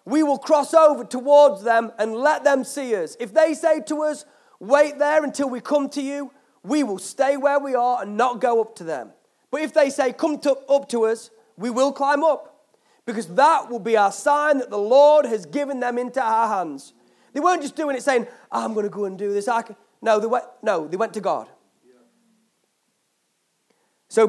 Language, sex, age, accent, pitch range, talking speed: English, male, 30-49, British, 215-280 Hz, 215 wpm